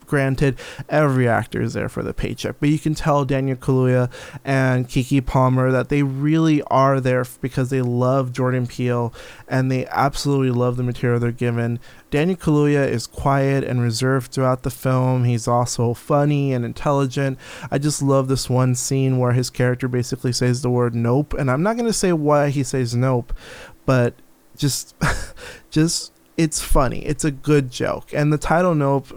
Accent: American